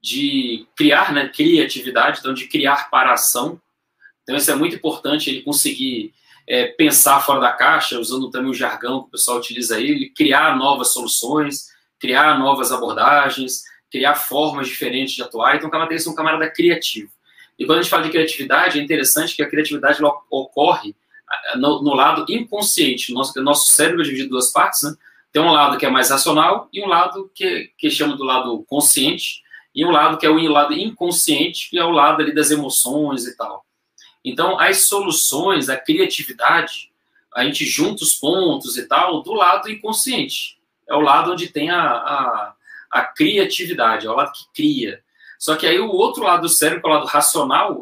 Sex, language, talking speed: male, Portuguese, 190 wpm